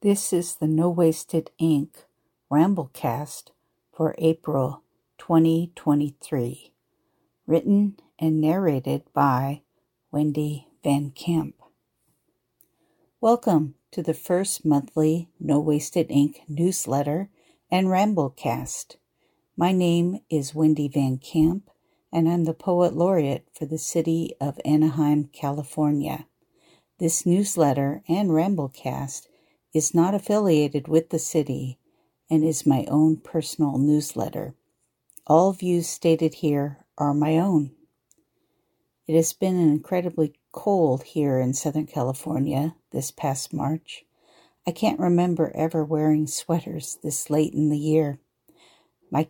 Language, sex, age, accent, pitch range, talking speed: English, female, 50-69, American, 145-170 Hz, 110 wpm